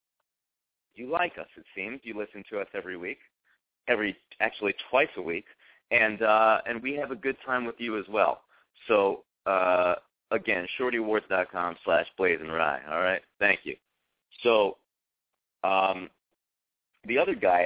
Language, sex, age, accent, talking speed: English, male, 40-59, American, 150 wpm